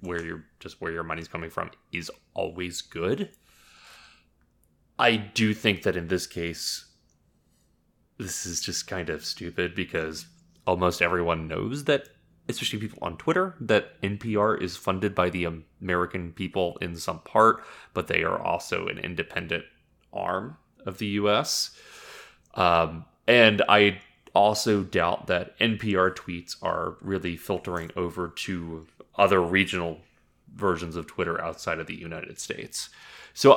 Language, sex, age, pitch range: English, male, 20-39, 85-100 Hz